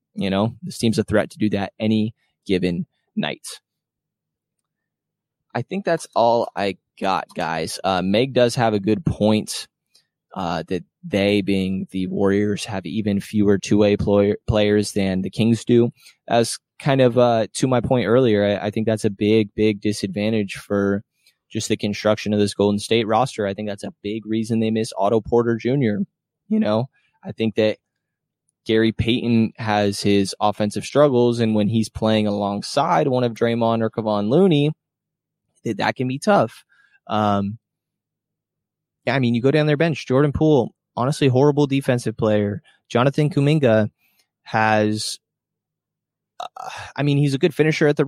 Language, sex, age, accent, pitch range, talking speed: English, male, 20-39, American, 105-130 Hz, 160 wpm